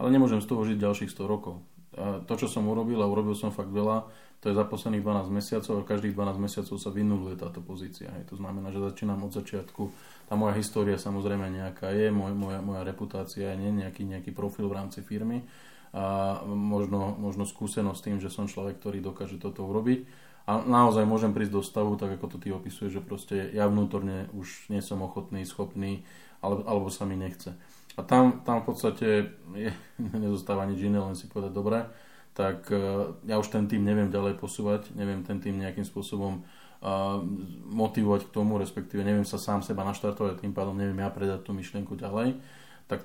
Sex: male